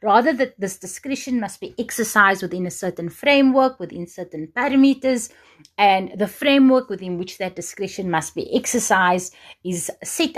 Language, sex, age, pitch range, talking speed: English, female, 30-49, 170-230 Hz, 150 wpm